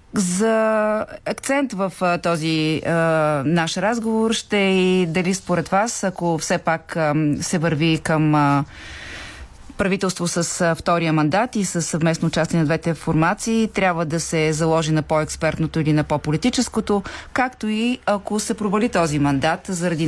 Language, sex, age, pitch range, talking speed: Bulgarian, female, 30-49, 155-205 Hz, 145 wpm